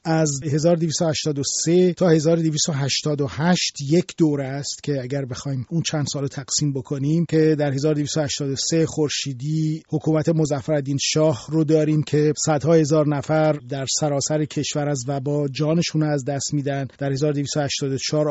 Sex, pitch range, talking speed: male, 145-170 Hz, 130 wpm